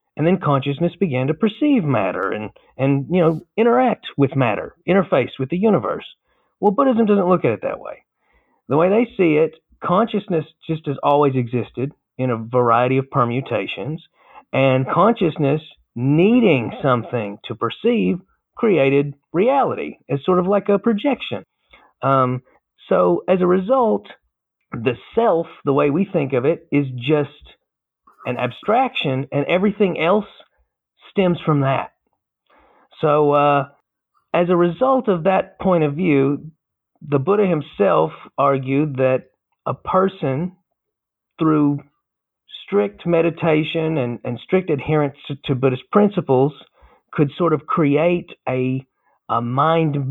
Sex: male